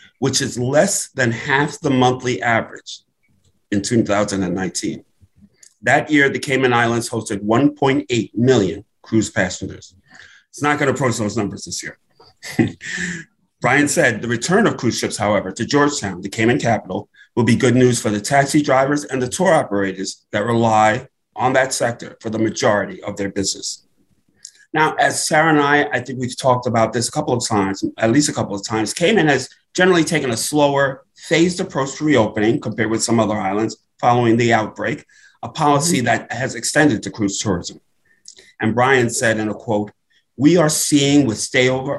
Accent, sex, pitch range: American, male, 110-140 Hz